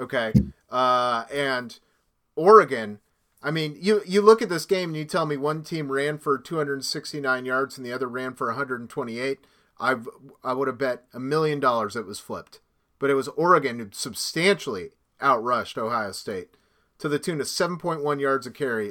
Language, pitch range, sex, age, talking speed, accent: English, 130-170 Hz, male, 30-49, 210 wpm, American